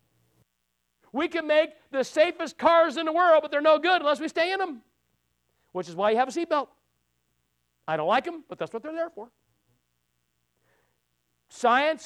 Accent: American